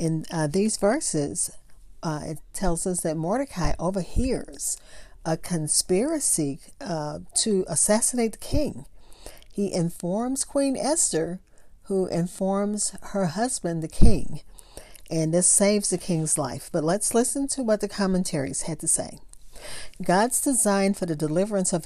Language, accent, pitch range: English, American, 165-215 Hz